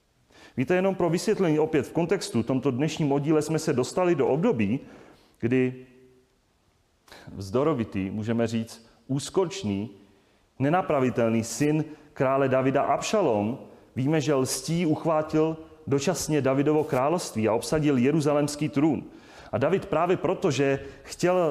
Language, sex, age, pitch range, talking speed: Czech, male, 30-49, 125-155 Hz, 115 wpm